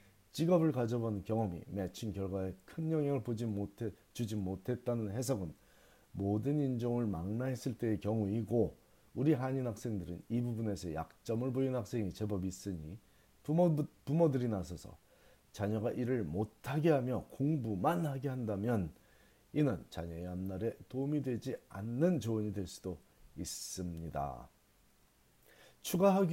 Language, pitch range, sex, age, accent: Korean, 100-135 Hz, male, 40-59, native